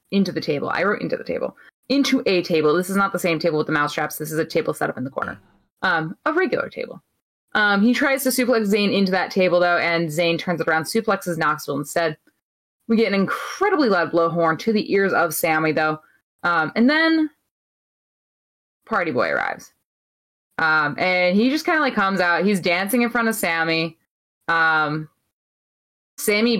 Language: English